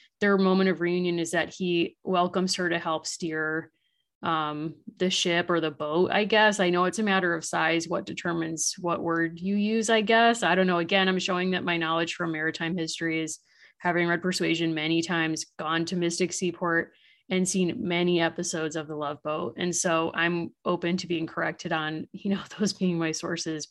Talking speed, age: 200 wpm, 30-49